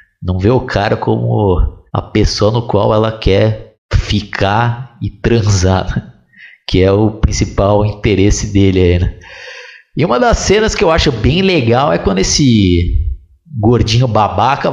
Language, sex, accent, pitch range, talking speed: Portuguese, male, Brazilian, 95-125 Hz, 145 wpm